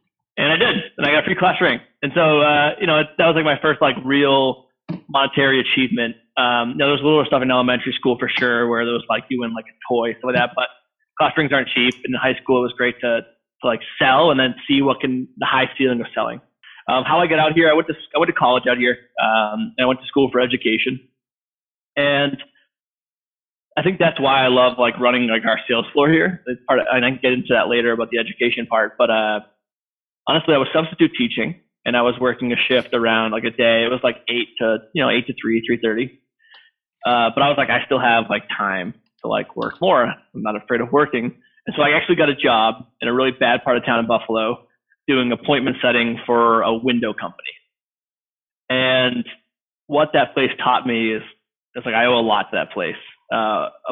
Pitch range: 115-140 Hz